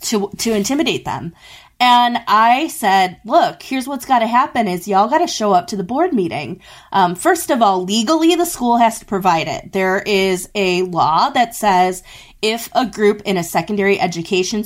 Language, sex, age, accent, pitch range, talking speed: English, female, 20-39, American, 185-250 Hz, 190 wpm